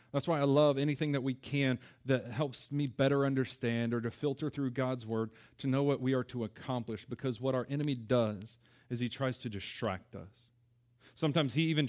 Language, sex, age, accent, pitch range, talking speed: English, male, 30-49, American, 120-135 Hz, 200 wpm